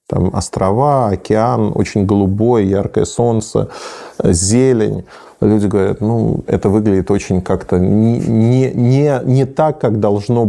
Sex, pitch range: male, 95-115 Hz